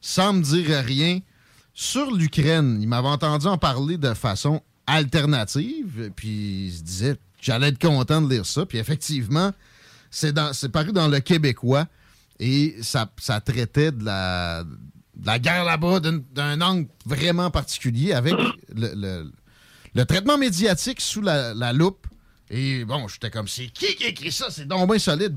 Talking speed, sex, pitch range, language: 170 wpm, male, 115-160 Hz, French